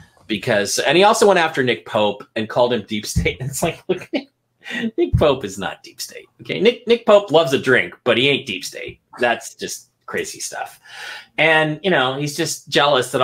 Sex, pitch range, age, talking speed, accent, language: male, 120-190 Hz, 40-59, 205 wpm, American, English